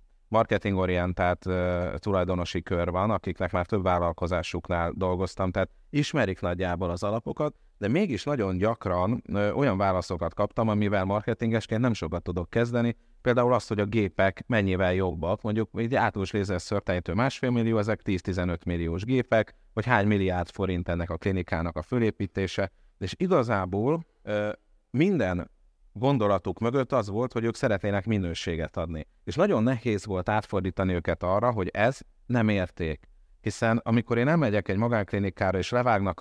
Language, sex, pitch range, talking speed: Hungarian, male, 90-120 Hz, 145 wpm